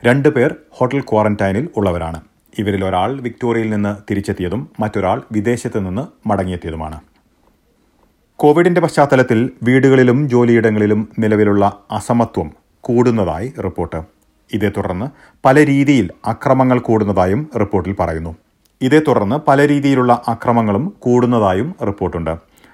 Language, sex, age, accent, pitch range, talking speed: Malayalam, male, 30-49, native, 95-125 Hz, 95 wpm